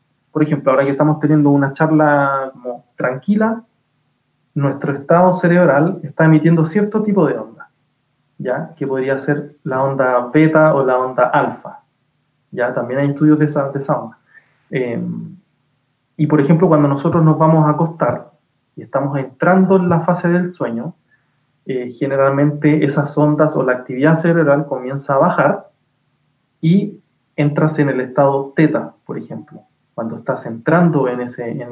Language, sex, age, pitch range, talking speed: Spanish, male, 20-39, 135-170 Hz, 155 wpm